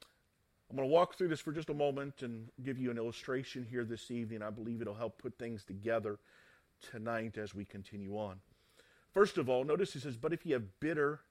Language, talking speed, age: English, 225 wpm, 40-59